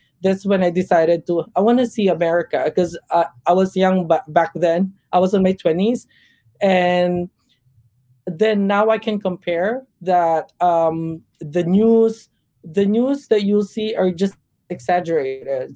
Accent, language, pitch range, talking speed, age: Filipino, English, 155-195 Hz, 150 wpm, 20-39